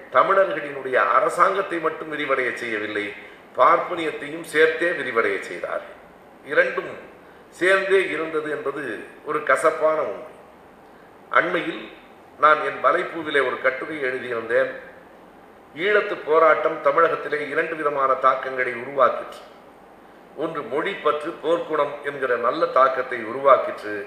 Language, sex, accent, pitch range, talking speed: Tamil, male, native, 130-170 Hz, 95 wpm